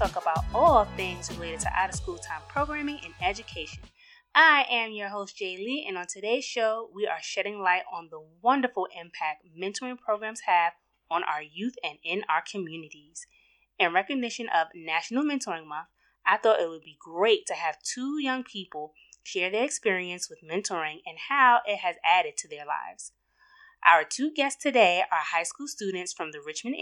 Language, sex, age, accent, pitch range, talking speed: English, female, 20-39, American, 170-255 Hz, 180 wpm